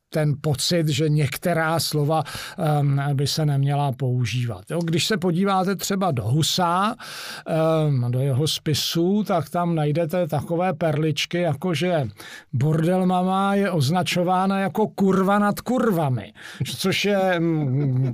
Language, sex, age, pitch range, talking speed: Slovak, male, 50-69, 155-185 Hz, 125 wpm